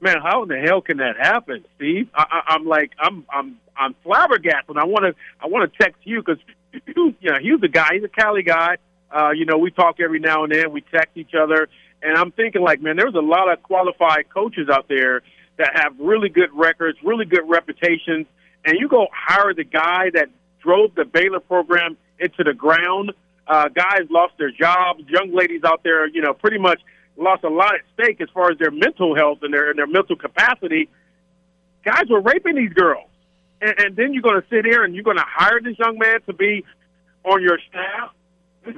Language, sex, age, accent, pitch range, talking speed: English, male, 50-69, American, 165-205 Hz, 215 wpm